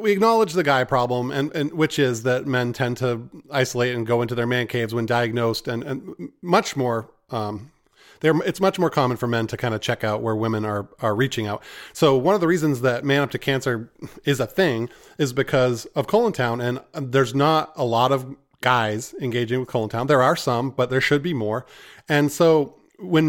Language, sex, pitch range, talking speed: English, male, 120-160 Hz, 220 wpm